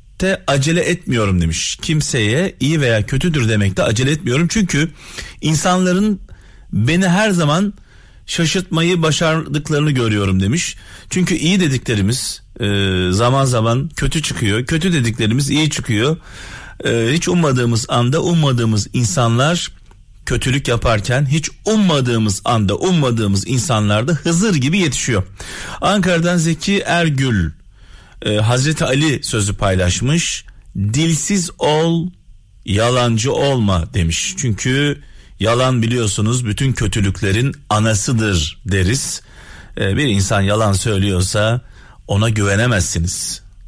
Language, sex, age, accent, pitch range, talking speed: Turkish, male, 40-59, native, 100-150 Hz, 100 wpm